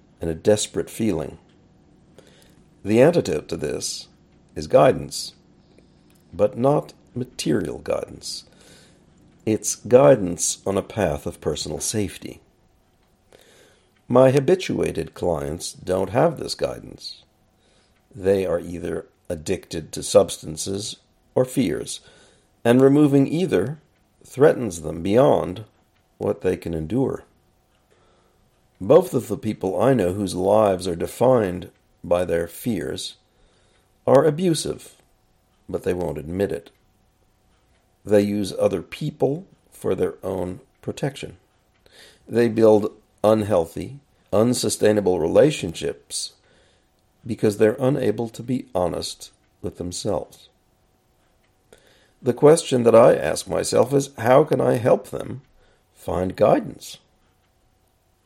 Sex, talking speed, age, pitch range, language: male, 105 wpm, 50-69, 95-120 Hz, English